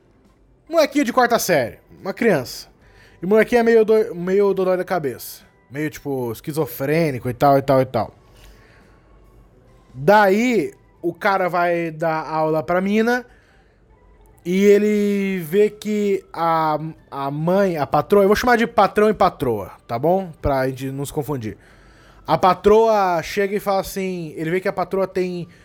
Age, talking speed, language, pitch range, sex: 20-39, 155 wpm, Portuguese, 145-190 Hz, male